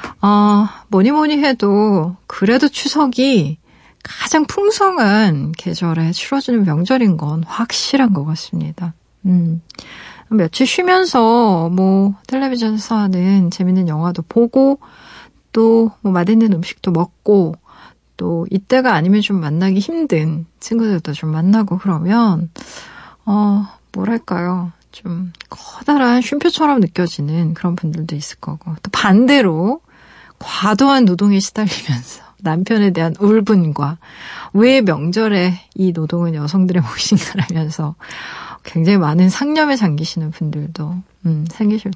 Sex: female